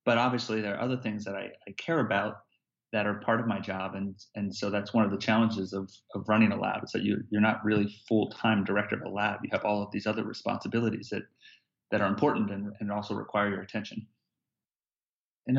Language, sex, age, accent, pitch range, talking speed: English, male, 30-49, American, 105-120 Hz, 225 wpm